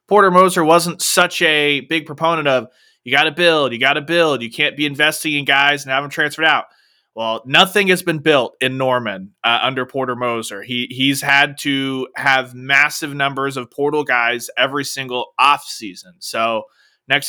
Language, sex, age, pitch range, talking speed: English, male, 20-39, 135-165 Hz, 185 wpm